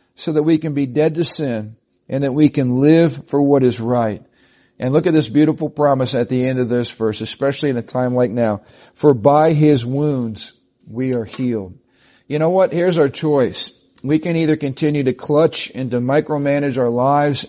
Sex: male